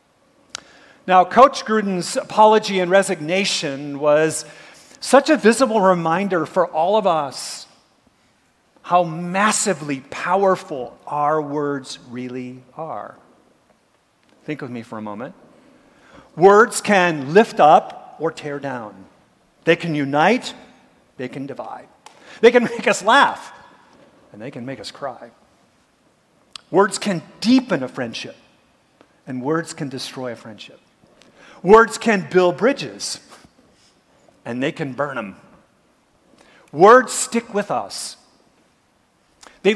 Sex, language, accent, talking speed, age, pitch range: male, English, American, 115 wpm, 50-69, 150-225 Hz